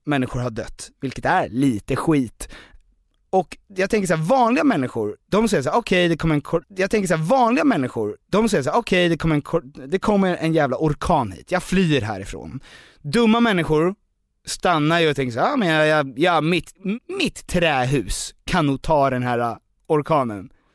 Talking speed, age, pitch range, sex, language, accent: 195 wpm, 30-49, 135-205 Hz, male, English, Swedish